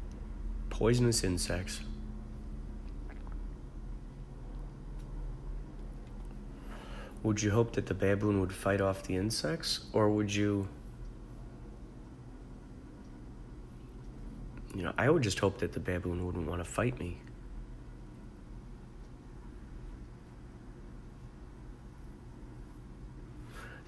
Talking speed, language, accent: 80 wpm, English, American